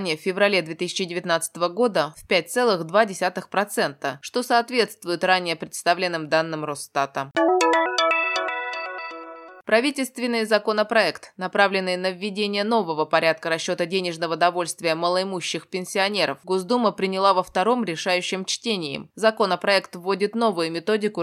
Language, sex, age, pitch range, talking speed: Russian, female, 20-39, 170-210 Hz, 100 wpm